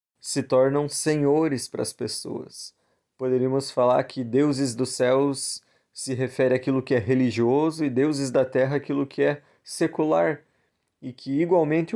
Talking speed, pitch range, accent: 145 wpm, 125-140 Hz, Brazilian